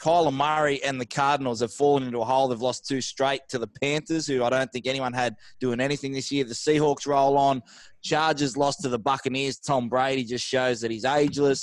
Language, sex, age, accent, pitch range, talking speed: English, male, 20-39, Australian, 125-145 Hz, 220 wpm